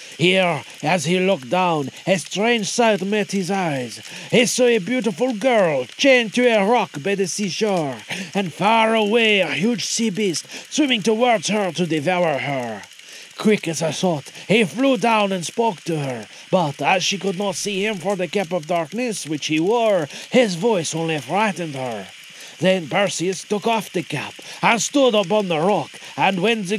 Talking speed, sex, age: 180 wpm, male, 40-59